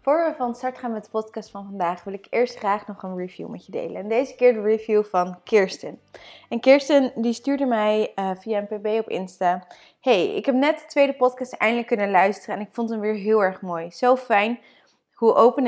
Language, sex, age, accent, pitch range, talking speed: Dutch, female, 20-39, Dutch, 185-235 Hz, 225 wpm